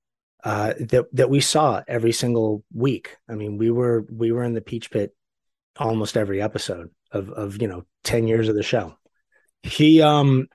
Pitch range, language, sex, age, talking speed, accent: 105-130 Hz, English, male, 30-49, 180 wpm, American